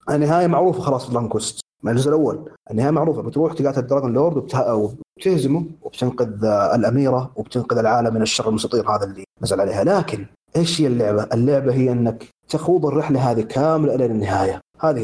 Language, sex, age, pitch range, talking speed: Arabic, male, 30-49, 125-165 Hz, 160 wpm